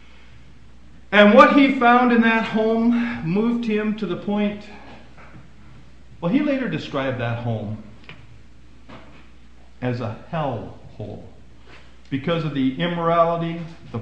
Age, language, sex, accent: 50-69, English, male, American